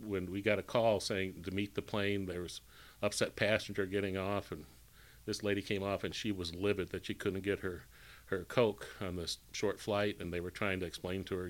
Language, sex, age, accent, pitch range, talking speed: English, male, 40-59, American, 90-105 Hz, 230 wpm